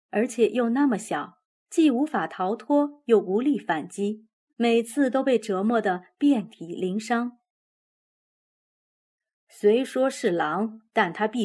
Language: Chinese